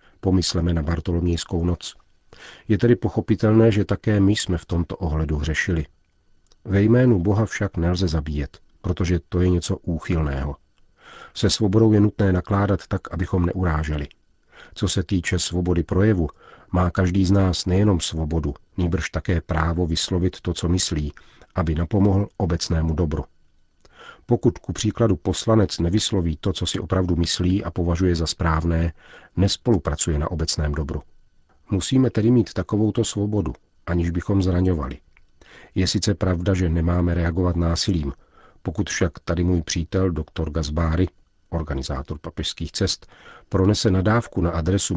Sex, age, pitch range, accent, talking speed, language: male, 40-59, 80-100 Hz, native, 135 wpm, Czech